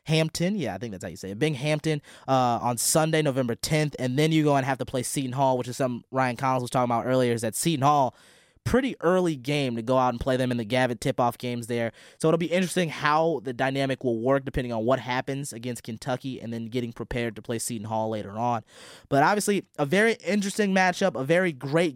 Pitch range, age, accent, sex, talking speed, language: 125-165 Hz, 20-39, American, male, 240 wpm, English